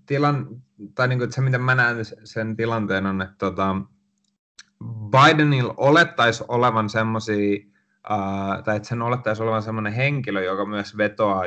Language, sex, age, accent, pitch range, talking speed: Finnish, male, 30-49, native, 100-120 Hz, 125 wpm